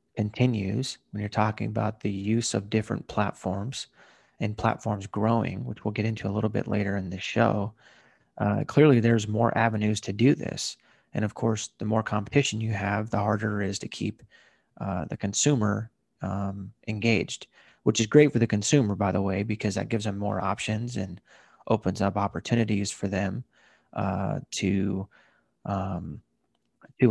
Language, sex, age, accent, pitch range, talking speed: English, male, 30-49, American, 100-110 Hz, 170 wpm